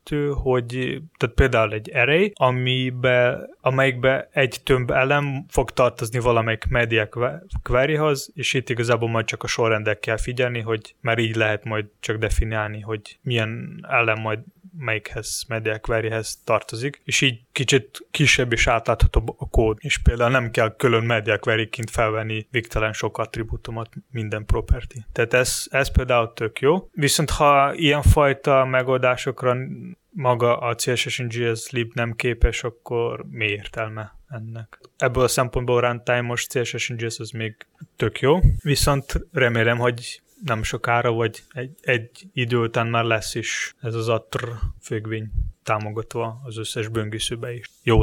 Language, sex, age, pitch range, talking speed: Hungarian, male, 20-39, 110-130 Hz, 140 wpm